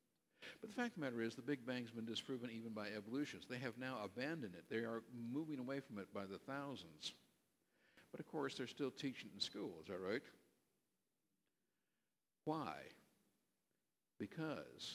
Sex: male